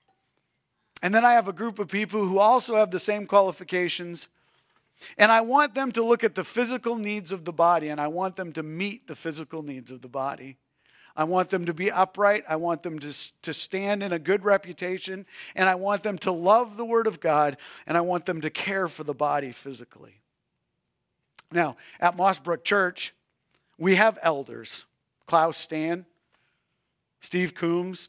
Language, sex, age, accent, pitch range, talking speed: English, male, 50-69, American, 155-195 Hz, 185 wpm